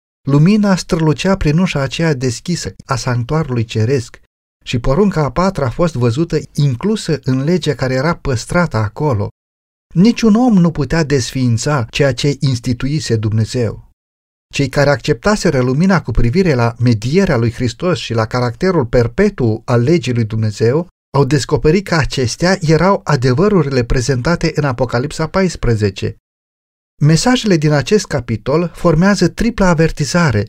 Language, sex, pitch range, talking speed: Romanian, male, 120-170 Hz, 130 wpm